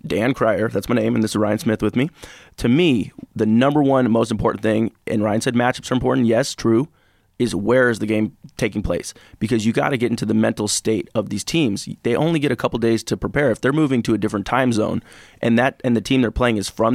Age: 20-39